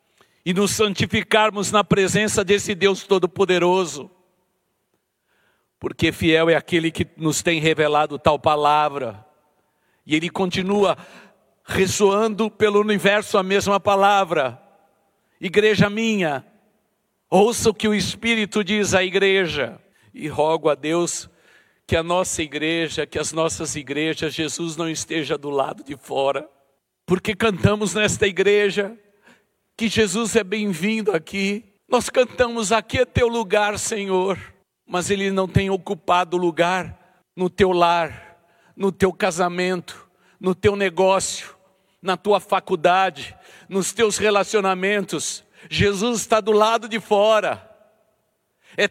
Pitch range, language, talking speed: 175-215 Hz, Portuguese, 125 wpm